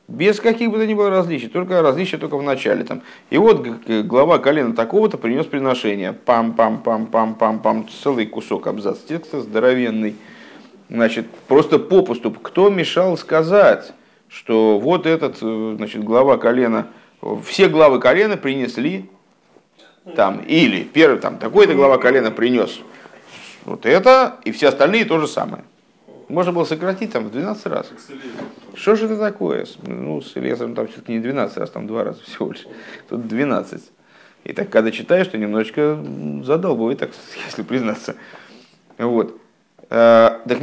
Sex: male